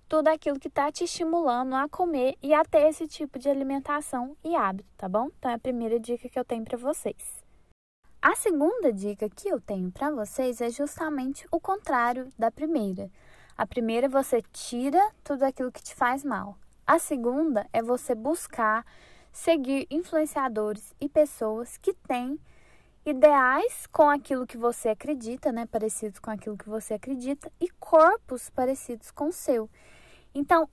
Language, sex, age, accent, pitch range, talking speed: Portuguese, female, 10-29, Brazilian, 230-305 Hz, 165 wpm